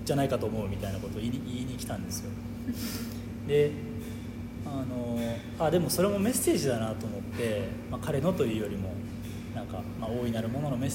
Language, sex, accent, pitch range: Japanese, male, native, 115-120 Hz